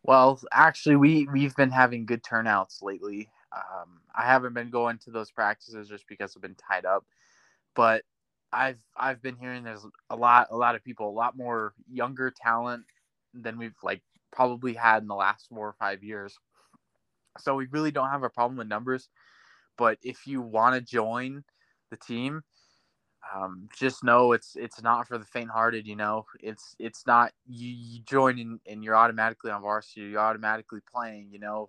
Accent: American